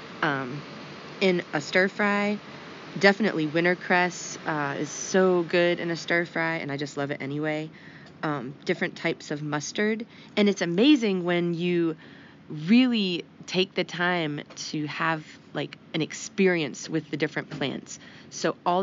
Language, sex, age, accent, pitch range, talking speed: English, female, 20-39, American, 155-185 Hz, 145 wpm